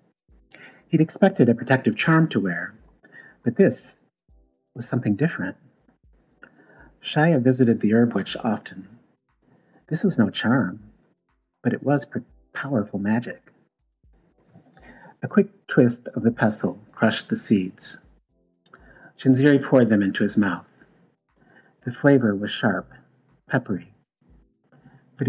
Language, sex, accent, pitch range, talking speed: English, male, American, 105-135 Hz, 115 wpm